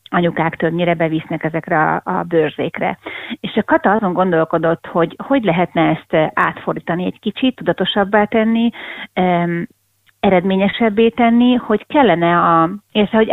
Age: 30-49